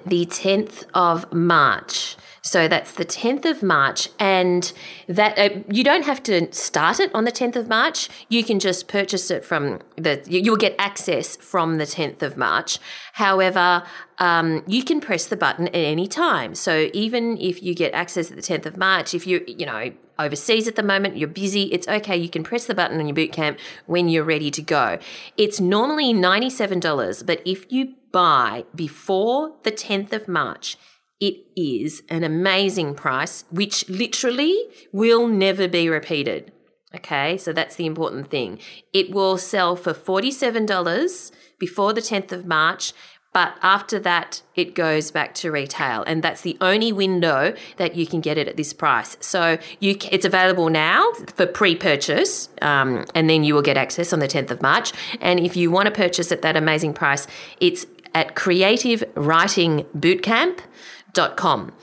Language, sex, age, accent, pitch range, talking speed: English, female, 30-49, Australian, 165-210 Hz, 170 wpm